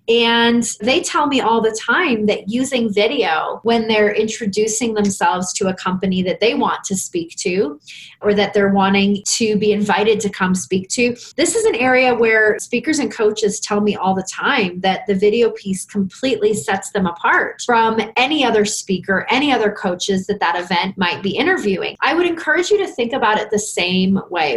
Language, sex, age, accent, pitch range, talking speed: English, female, 20-39, American, 195-240 Hz, 195 wpm